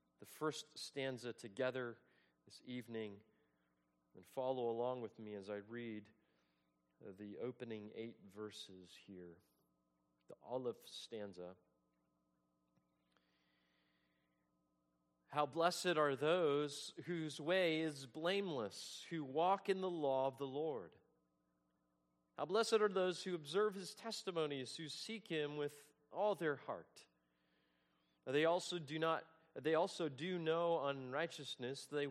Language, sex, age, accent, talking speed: English, male, 40-59, American, 120 wpm